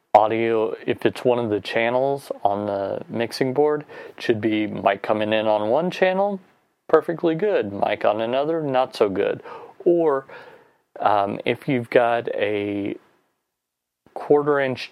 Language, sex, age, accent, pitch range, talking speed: English, male, 30-49, American, 105-145 Hz, 135 wpm